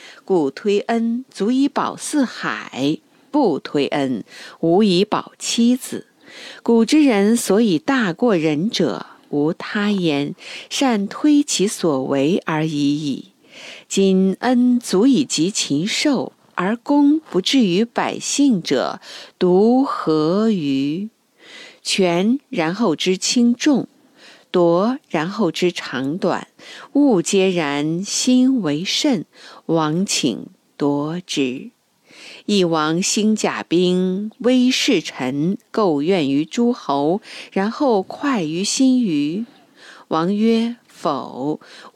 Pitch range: 165-245 Hz